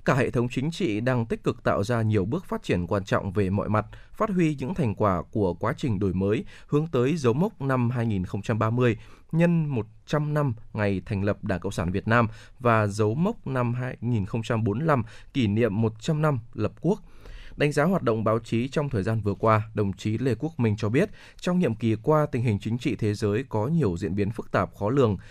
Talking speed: 220 wpm